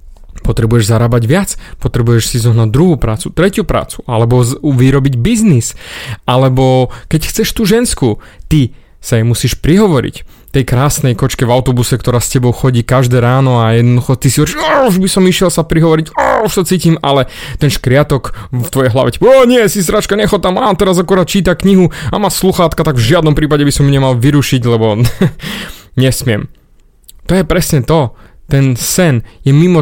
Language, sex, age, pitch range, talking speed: Slovak, male, 30-49, 120-165 Hz, 175 wpm